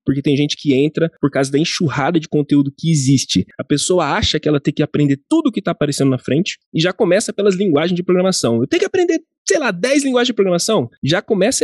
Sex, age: male, 20-39